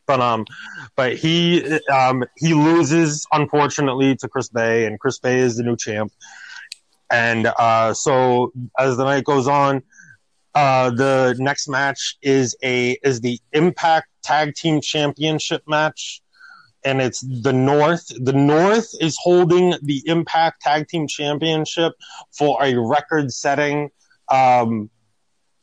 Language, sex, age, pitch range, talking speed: English, male, 30-49, 125-155 Hz, 135 wpm